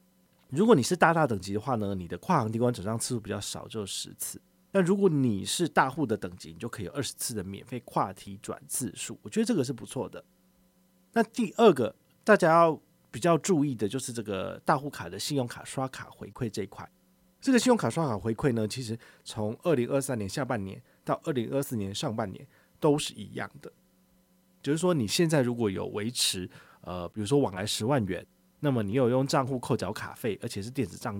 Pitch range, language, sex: 105-160 Hz, Chinese, male